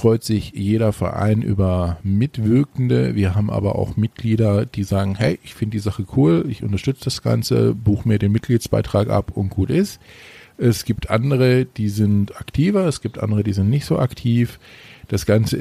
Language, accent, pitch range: German, German, 100-115 Hz